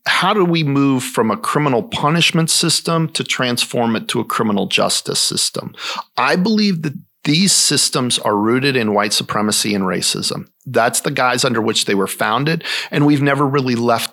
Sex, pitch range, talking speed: male, 110-150 Hz, 180 wpm